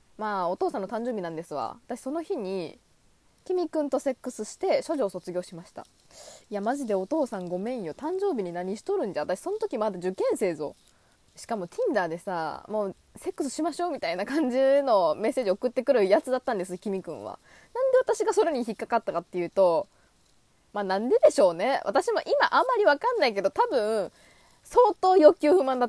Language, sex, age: Japanese, female, 20-39